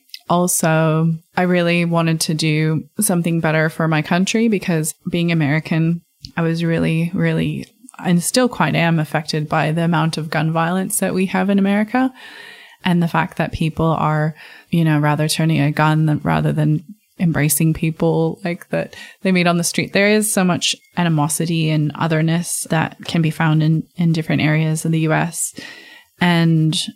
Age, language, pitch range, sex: 20-39, English, 155-180 Hz, female